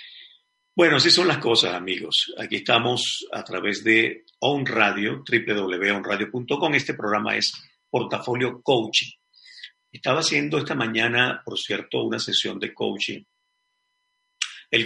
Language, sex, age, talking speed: Spanish, male, 50-69, 115 wpm